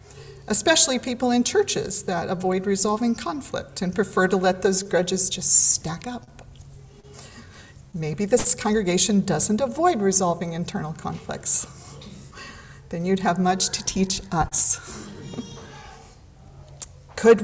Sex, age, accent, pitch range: female, 40-59, American, 175-230 Hz